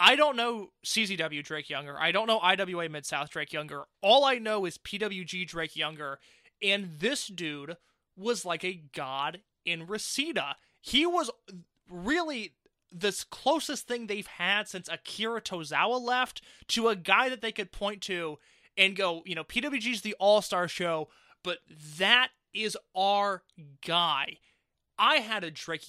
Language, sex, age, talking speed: English, male, 20-39, 155 wpm